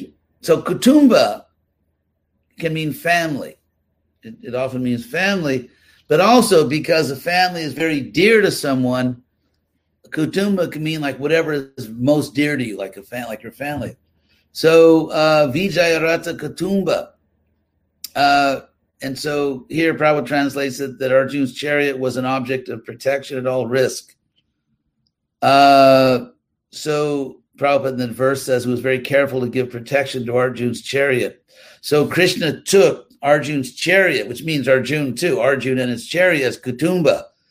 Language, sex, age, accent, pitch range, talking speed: English, male, 50-69, American, 125-150 Hz, 145 wpm